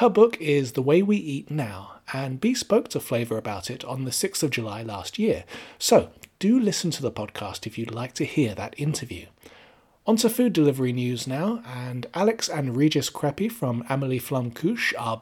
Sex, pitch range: male, 120-165 Hz